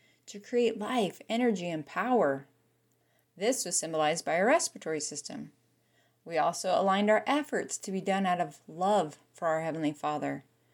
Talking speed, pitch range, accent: 155 wpm, 145-215 Hz, American